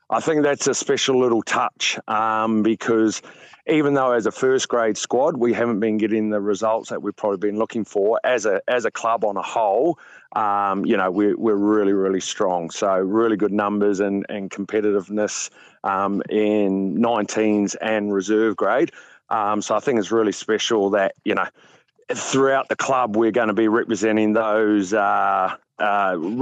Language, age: English, 30-49